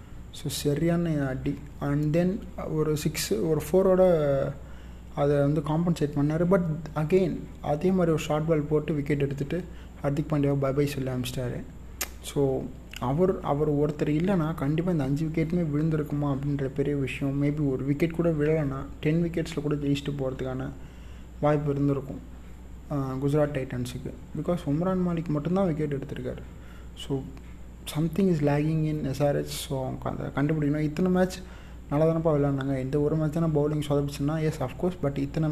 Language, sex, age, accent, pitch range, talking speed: Tamil, male, 30-49, native, 135-155 Hz, 155 wpm